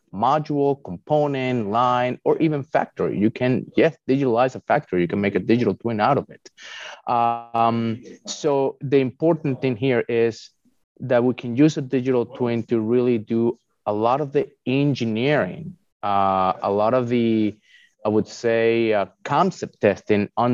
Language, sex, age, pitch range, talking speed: English, male, 30-49, 100-130 Hz, 160 wpm